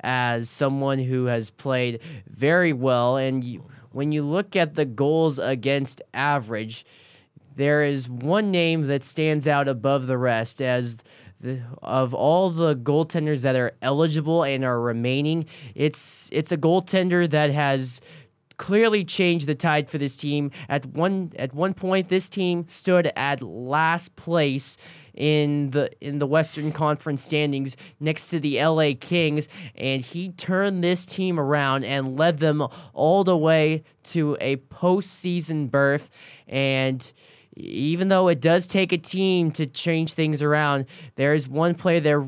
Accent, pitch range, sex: American, 135-170 Hz, male